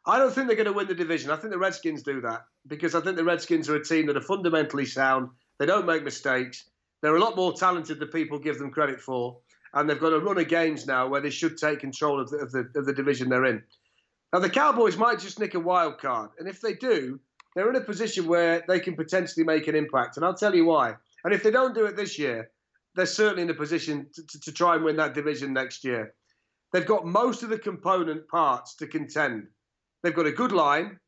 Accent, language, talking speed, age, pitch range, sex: British, English, 245 wpm, 40-59, 140-175 Hz, male